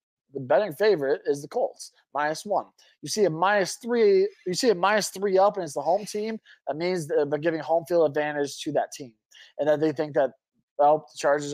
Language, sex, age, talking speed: English, male, 20-39, 225 wpm